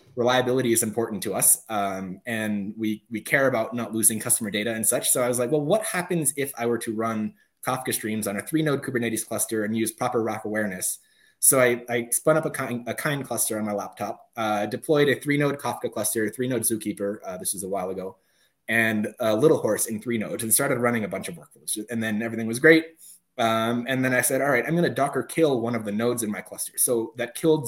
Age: 20-39